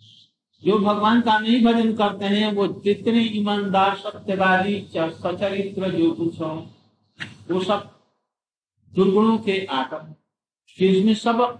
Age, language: 50-69, Hindi